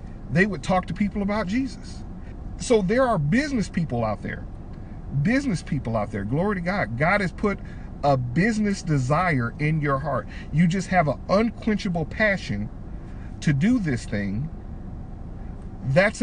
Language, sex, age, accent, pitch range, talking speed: English, male, 50-69, American, 135-195 Hz, 150 wpm